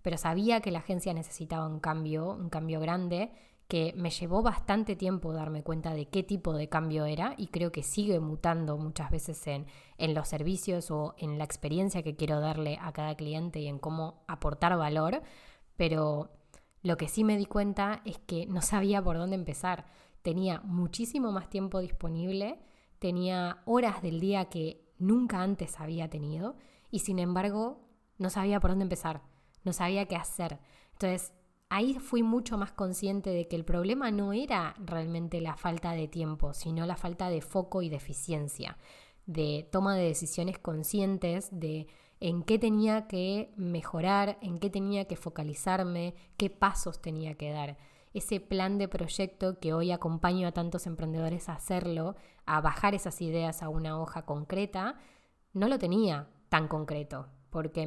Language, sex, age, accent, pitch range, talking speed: Spanish, female, 20-39, Argentinian, 160-195 Hz, 170 wpm